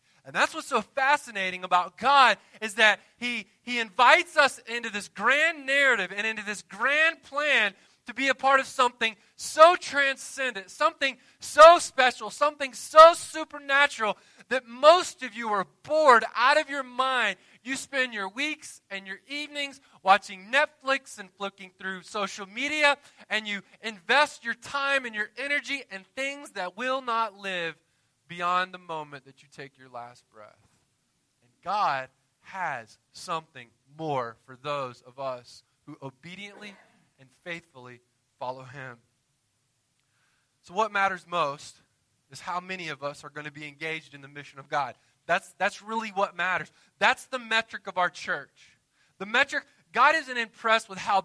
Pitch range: 160-260 Hz